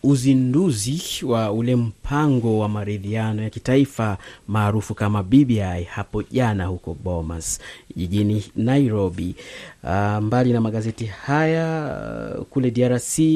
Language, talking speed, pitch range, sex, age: English, 110 wpm, 110-135 Hz, male, 30-49